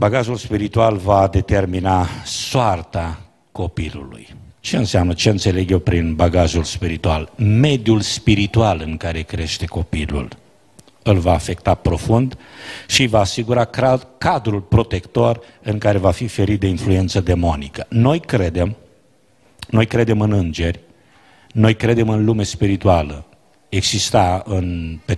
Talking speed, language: 120 wpm, Romanian